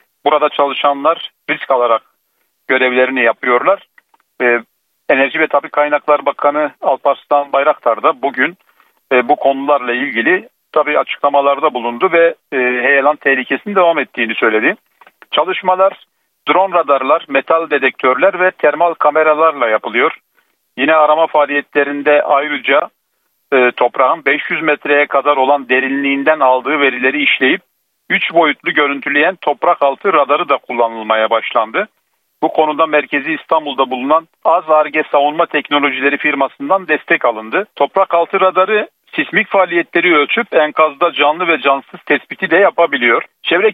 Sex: male